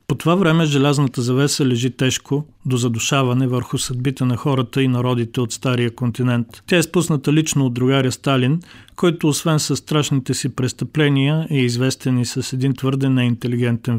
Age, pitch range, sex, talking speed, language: 40-59, 125-145 Hz, male, 165 wpm, Bulgarian